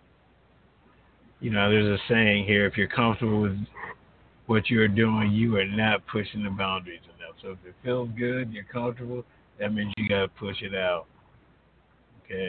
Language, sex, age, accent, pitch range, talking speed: English, male, 60-79, American, 115-160 Hz, 180 wpm